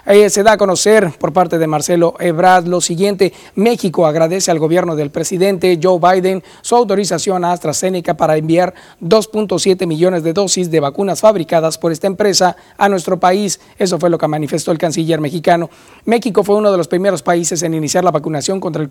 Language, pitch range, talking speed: Spanish, 165-200 Hz, 190 wpm